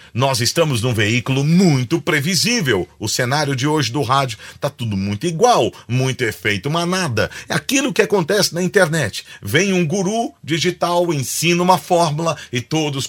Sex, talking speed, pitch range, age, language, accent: male, 155 wpm, 100-150 Hz, 40-59, Portuguese, Brazilian